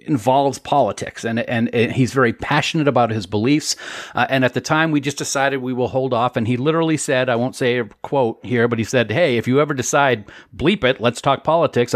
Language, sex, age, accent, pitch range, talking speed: English, male, 40-59, American, 115-140 Hz, 225 wpm